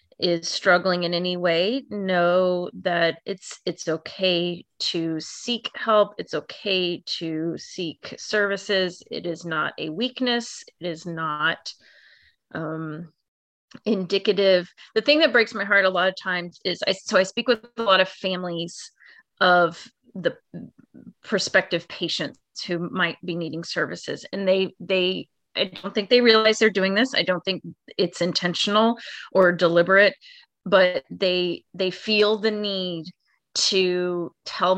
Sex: female